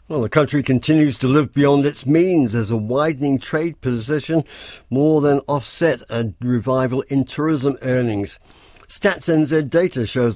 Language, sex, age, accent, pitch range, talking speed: English, male, 50-69, British, 110-155 Hz, 150 wpm